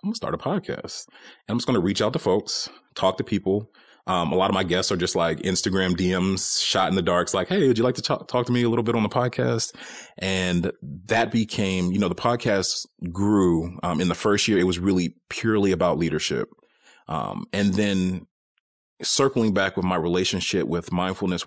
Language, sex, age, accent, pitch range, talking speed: English, male, 30-49, American, 85-100 Hz, 215 wpm